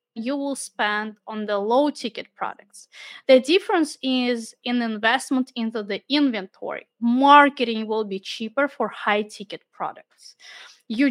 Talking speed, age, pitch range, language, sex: 135 wpm, 20-39, 215-260 Hz, English, female